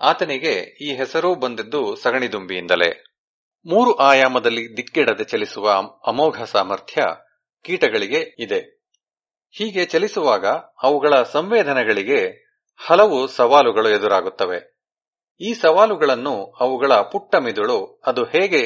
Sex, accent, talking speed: male, Indian, 85 wpm